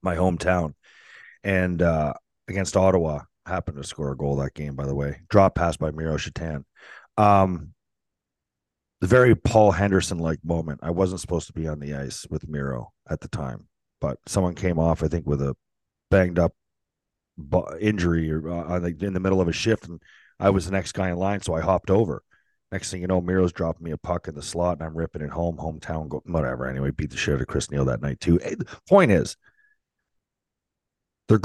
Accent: American